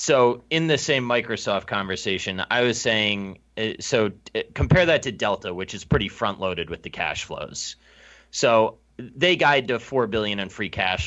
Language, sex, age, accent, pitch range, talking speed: English, male, 30-49, American, 90-130 Hz, 170 wpm